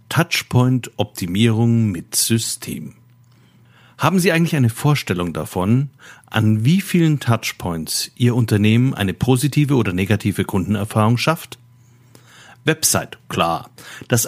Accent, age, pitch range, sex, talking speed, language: German, 50-69, 110-140 Hz, male, 105 wpm, German